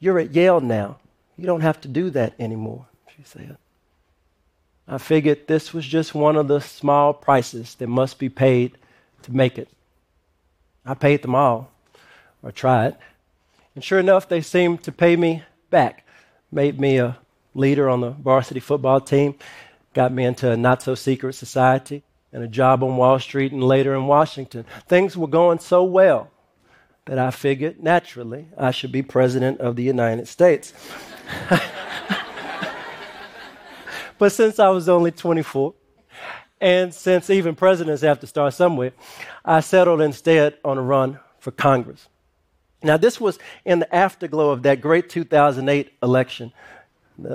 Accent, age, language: American, 50-69, French